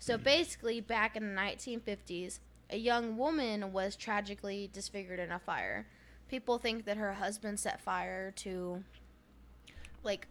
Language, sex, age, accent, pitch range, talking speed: English, female, 10-29, American, 185-235 Hz, 140 wpm